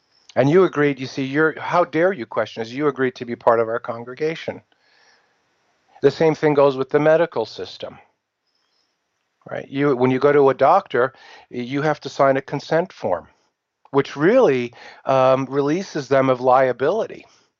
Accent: American